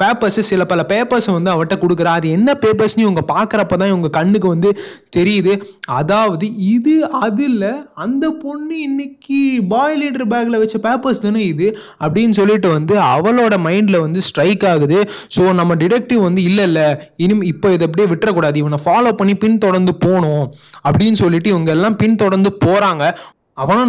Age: 20-39